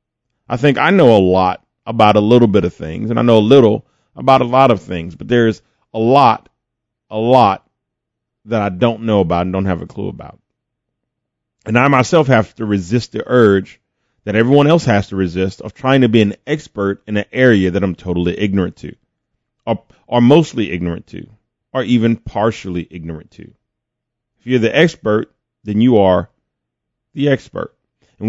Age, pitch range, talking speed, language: 30-49, 100-125 Hz, 185 wpm, English